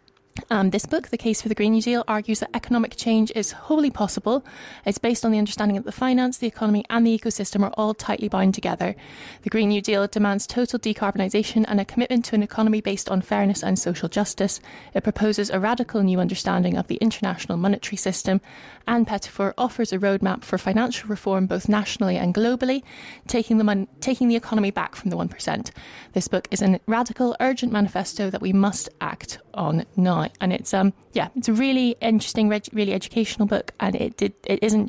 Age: 20-39